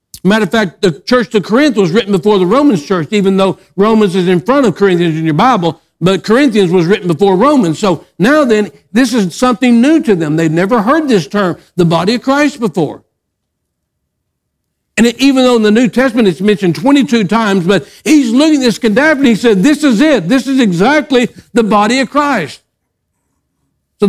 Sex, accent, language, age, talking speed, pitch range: male, American, English, 60-79, 200 wpm, 170-240 Hz